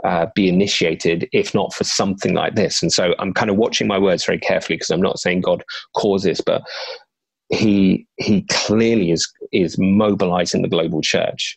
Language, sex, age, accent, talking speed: English, male, 30-49, British, 180 wpm